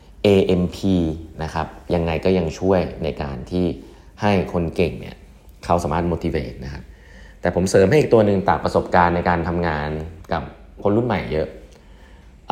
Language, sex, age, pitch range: Thai, male, 30-49, 75-100 Hz